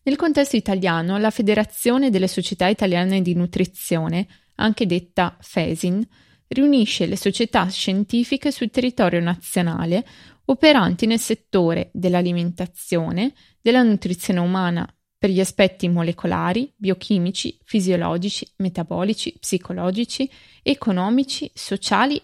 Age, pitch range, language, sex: 20-39, 180-245 Hz, Italian, female